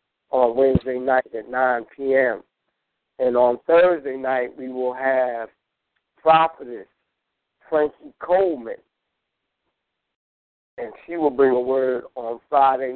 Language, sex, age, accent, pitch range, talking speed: English, male, 50-69, American, 130-145 Hz, 110 wpm